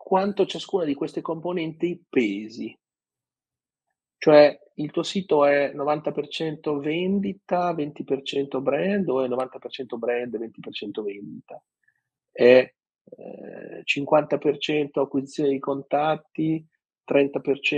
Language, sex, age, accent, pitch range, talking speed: Italian, male, 40-59, native, 130-175 Hz, 95 wpm